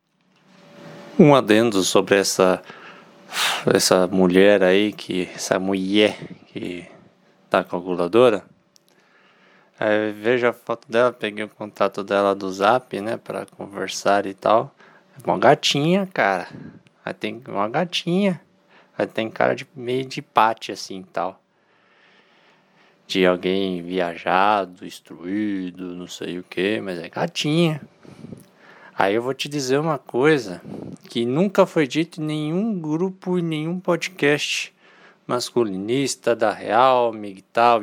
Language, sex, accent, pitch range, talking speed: Portuguese, male, Brazilian, 105-140 Hz, 125 wpm